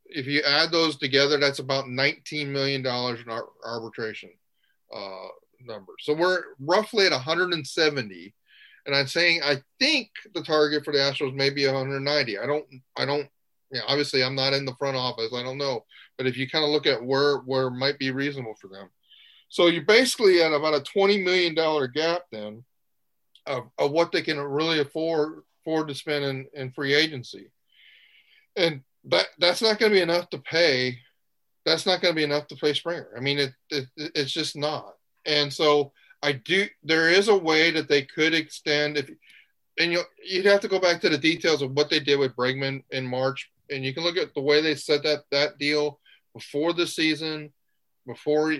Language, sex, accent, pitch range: English, male, American, 135-160 Hz